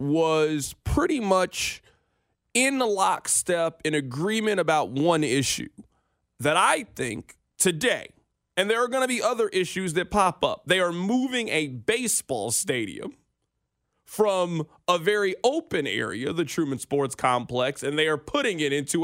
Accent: American